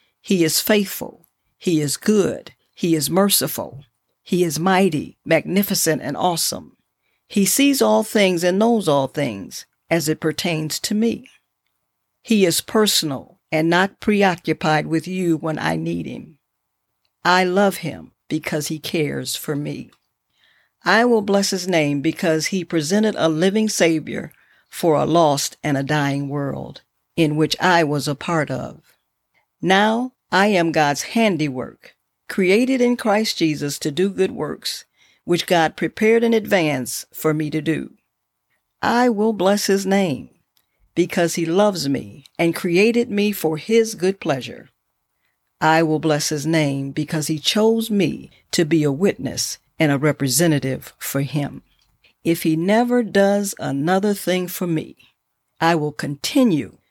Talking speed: 150 wpm